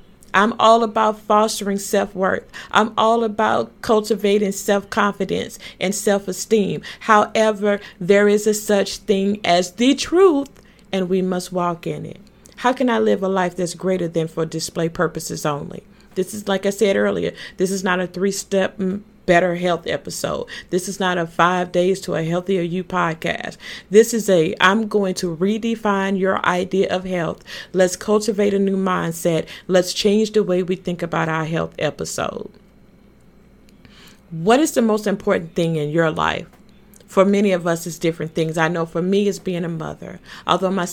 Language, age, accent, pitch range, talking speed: English, 40-59, American, 170-205 Hz, 175 wpm